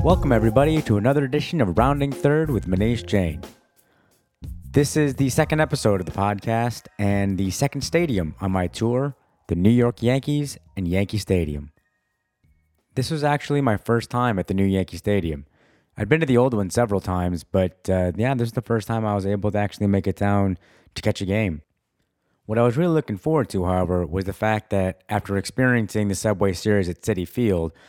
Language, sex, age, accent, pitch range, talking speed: English, male, 30-49, American, 90-115 Hz, 200 wpm